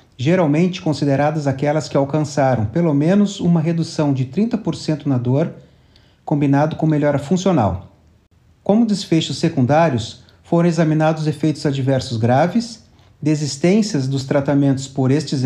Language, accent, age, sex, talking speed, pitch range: Portuguese, Brazilian, 40-59, male, 115 wpm, 125-170 Hz